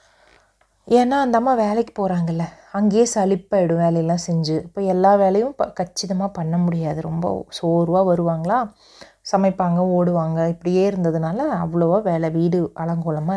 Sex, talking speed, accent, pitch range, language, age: female, 120 wpm, native, 165-210 Hz, Tamil, 30-49